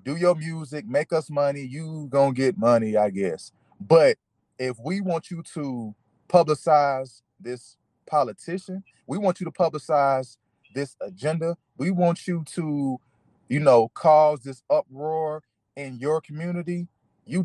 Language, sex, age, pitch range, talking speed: English, male, 30-49, 135-175 Hz, 140 wpm